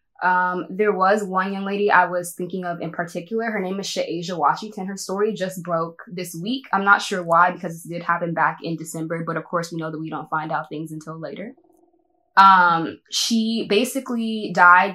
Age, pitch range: 10-29, 175-215 Hz